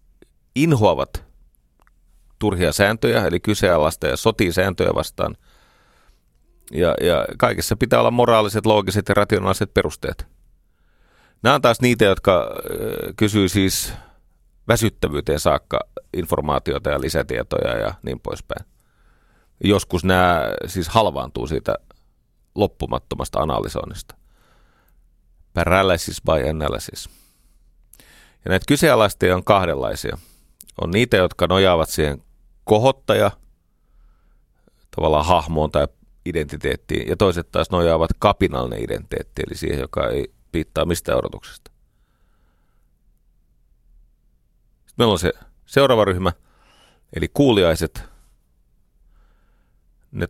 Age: 30-49